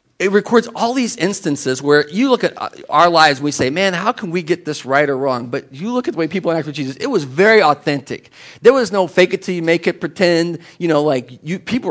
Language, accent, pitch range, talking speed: English, American, 150-215 Hz, 260 wpm